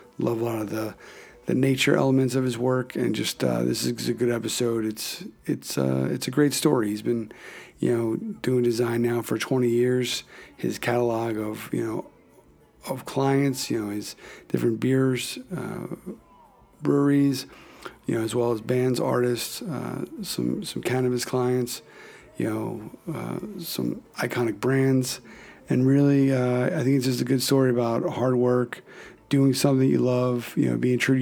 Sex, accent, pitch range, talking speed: male, American, 105-125 Hz, 175 wpm